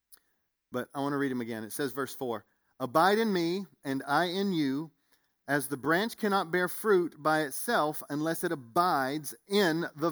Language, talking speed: English, 185 wpm